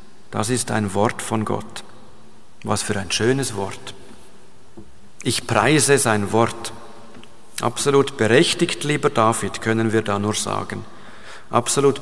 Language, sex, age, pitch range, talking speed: German, male, 50-69, 105-125 Hz, 125 wpm